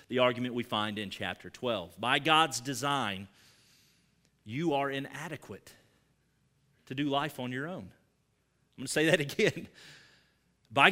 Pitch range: 125-180 Hz